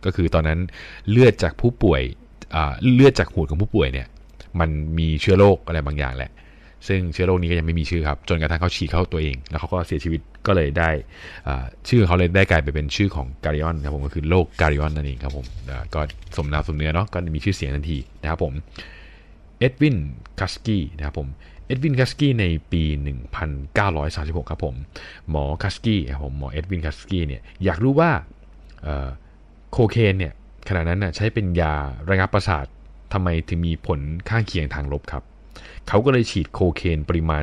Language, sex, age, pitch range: Thai, male, 20-39, 75-90 Hz